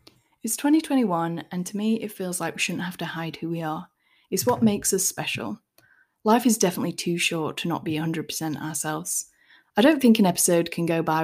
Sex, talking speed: female, 210 wpm